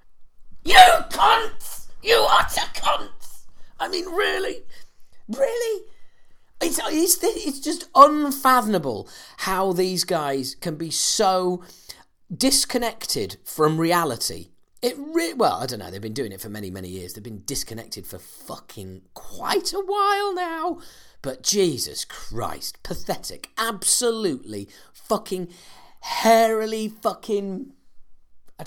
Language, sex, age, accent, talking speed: English, male, 40-59, British, 115 wpm